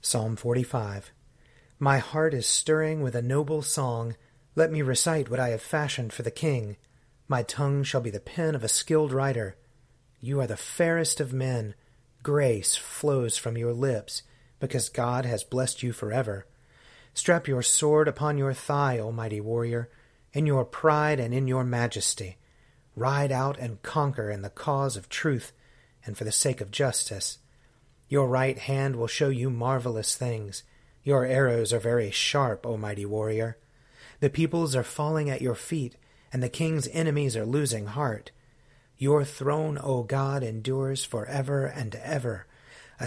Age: 30-49